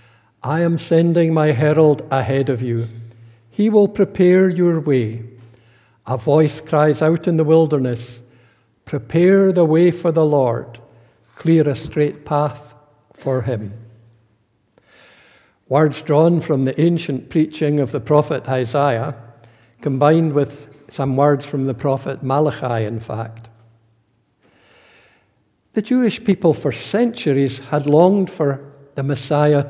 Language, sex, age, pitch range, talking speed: English, male, 60-79, 120-155 Hz, 125 wpm